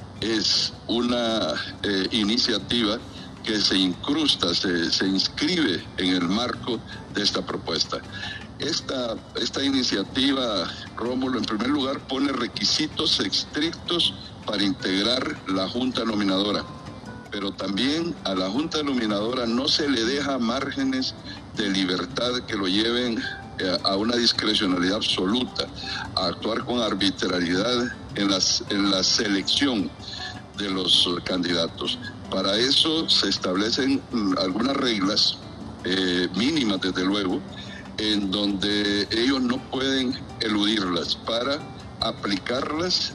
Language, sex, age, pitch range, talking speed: Spanish, male, 60-79, 95-125 Hz, 115 wpm